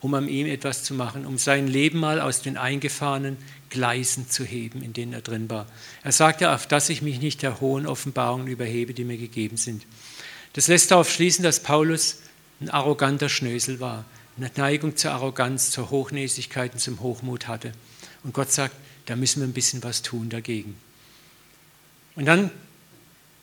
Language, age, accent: German, 50-69, German